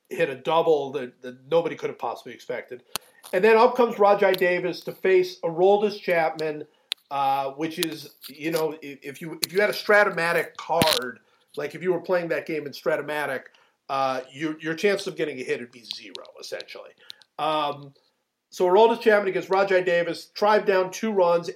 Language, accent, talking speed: English, American, 185 wpm